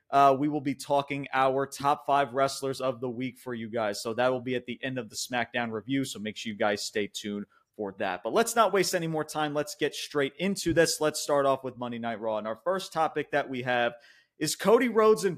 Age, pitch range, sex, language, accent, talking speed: 30-49, 120-150 Hz, male, English, American, 255 wpm